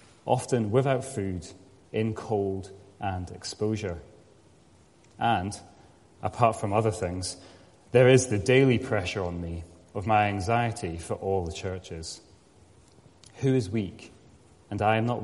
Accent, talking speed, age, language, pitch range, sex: British, 130 wpm, 30-49, English, 95-130 Hz, male